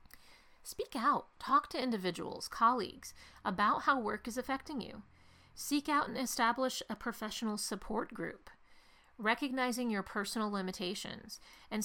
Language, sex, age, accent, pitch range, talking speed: English, female, 40-59, American, 205-250 Hz, 125 wpm